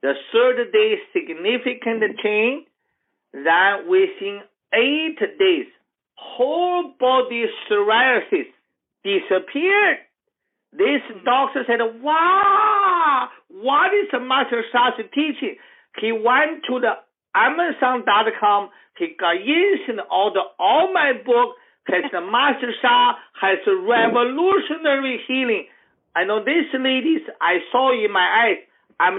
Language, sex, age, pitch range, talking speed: English, male, 50-69, 230-385 Hz, 105 wpm